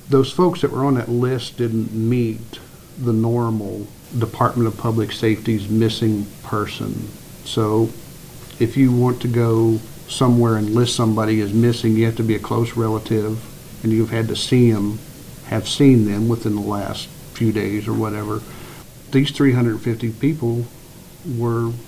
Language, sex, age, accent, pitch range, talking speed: English, male, 50-69, American, 110-125 Hz, 155 wpm